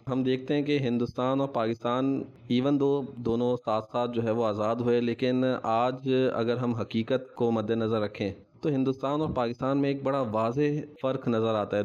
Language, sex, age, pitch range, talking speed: Urdu, male, 20-39, 105-120 Hz, 190 wpm